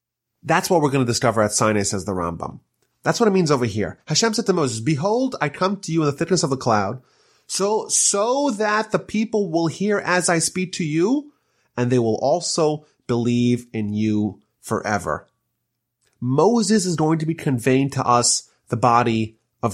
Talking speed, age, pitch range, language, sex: 190 wpm, 30-49, 120-185 Hz, English, male